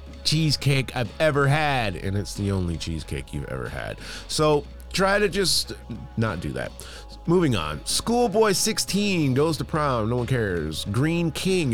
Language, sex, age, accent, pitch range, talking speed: English, male, 30-49, American, 95-150 Hz, 160 wpm